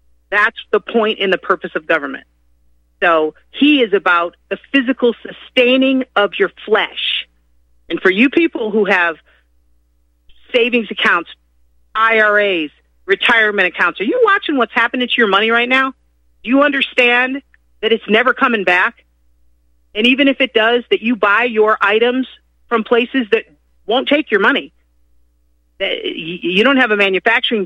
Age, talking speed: 40-59, 150 wpm